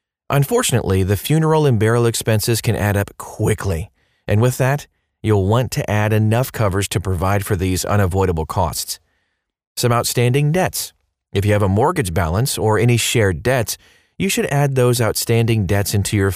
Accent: American